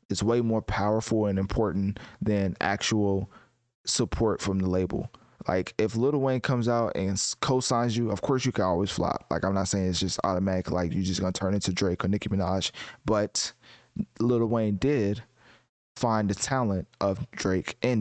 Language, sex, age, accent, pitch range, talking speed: English, male, 20-39, American, 100-120 Hz, 185 wpm